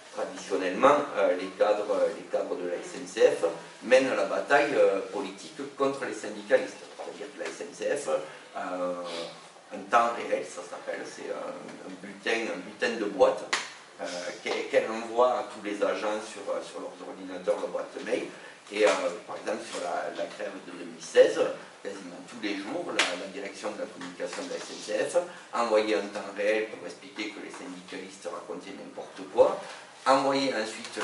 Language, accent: French, French